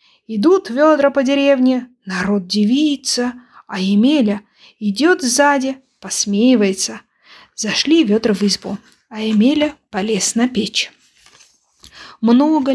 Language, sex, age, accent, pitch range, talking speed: Ukrainian, female, 20-39, native, 210-270 Hz, 100 wpm